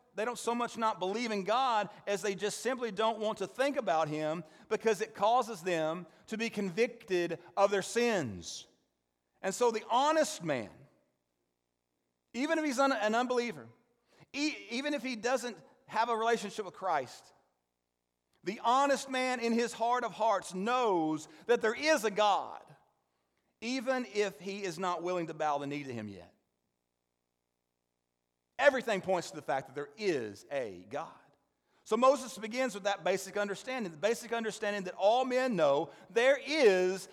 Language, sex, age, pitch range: English, male, 40-59, 165-230 Hz